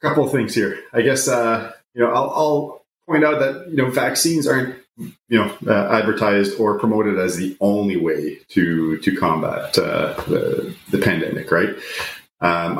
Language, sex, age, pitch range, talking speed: English, male, 30-49, 95-120 Hz, 175 wpm